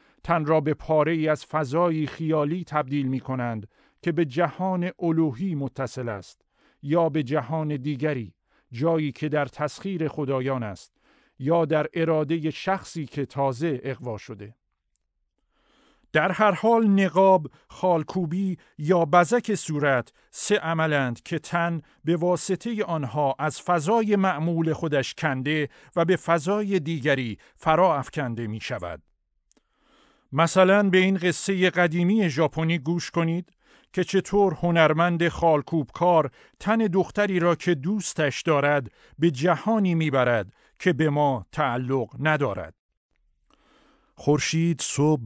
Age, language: 50-69, Persian